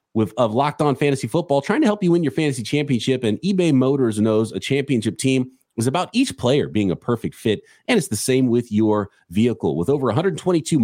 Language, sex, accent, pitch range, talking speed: English, male, American, 105-160 Hz, 215 wpm